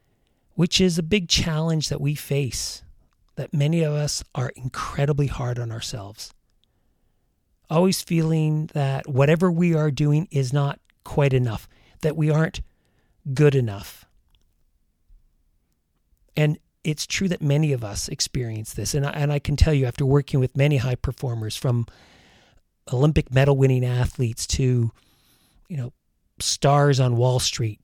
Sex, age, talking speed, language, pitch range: male, 40-59, 140 wpm, English, 115-150 Hz